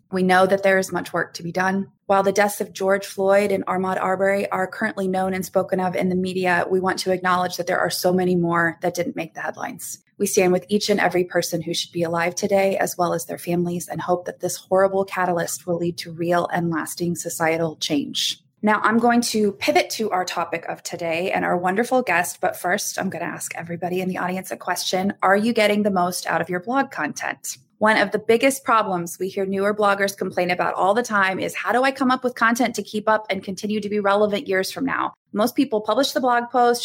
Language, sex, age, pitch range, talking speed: English, female, 20-39, 180-215 Hz, 245 wpm